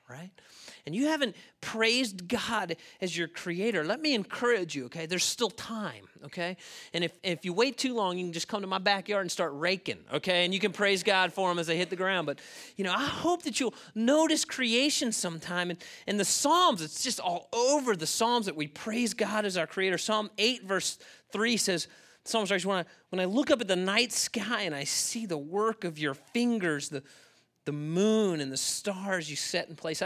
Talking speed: 210 wpm